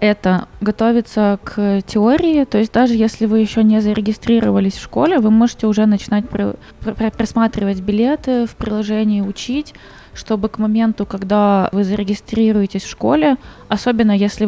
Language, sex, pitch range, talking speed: Russian, female, 200-230 Hz, 140 wpm